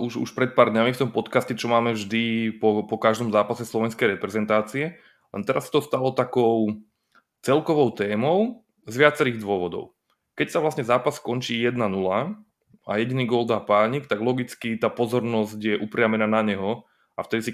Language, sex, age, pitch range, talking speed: Slovak, male, 20-39, 105-120 Hz, 170 wpm